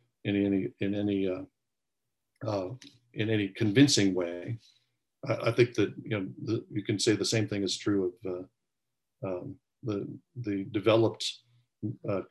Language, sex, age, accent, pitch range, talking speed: English, male, 50-69, American, 100-120 Hz, 155 wpm